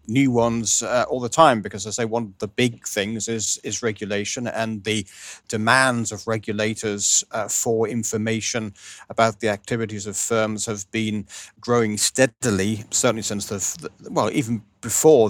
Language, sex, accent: English, male, British